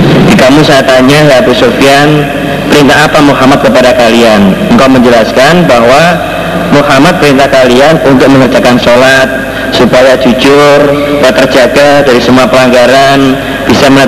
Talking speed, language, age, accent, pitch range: 115 wpm, Indonesian, 40-59, native, 130-150 Hz